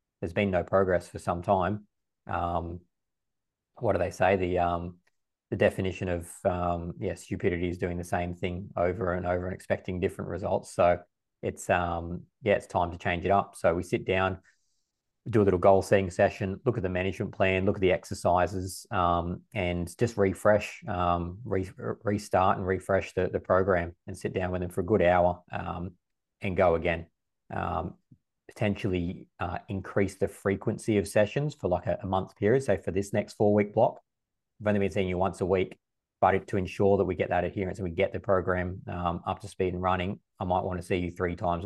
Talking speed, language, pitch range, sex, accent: 205 wpm, English, 90-100 Hz, male, Australian